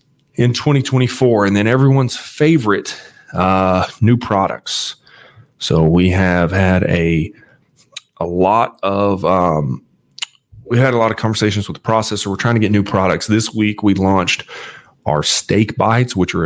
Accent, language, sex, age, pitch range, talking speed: American, English, male, 30-49, 90-110 Hz, 160 wpm